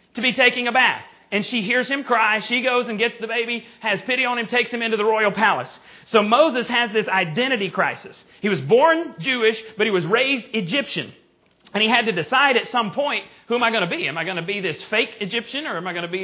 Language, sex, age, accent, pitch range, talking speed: English, male, 40-59, American, 195-245 Hz, 255 wpm